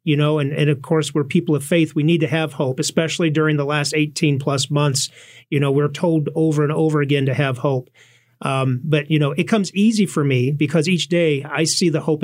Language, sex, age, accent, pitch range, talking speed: English, male, 50-69, American, 140-160 Hz, 240 wpm